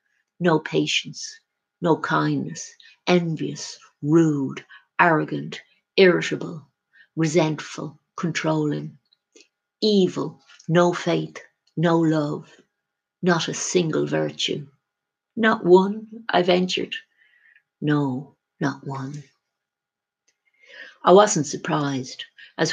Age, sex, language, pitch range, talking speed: 60-79, female, English, 135-180 Hz, 80 wpm